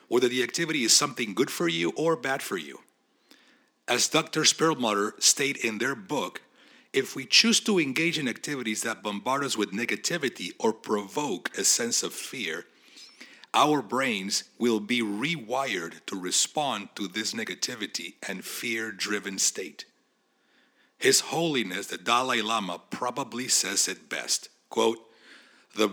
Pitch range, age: 105-145 Hz, 50-69